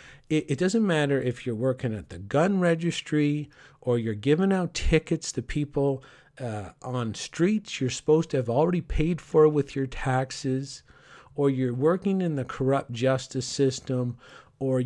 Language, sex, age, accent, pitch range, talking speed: English, male, 50-69, American, 125-155 Hz, 160 wpm